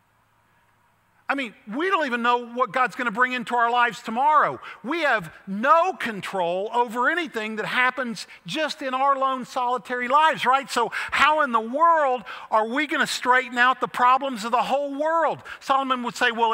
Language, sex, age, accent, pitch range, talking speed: English, male, 50-69, American, 145-245 Hz, 185 wpm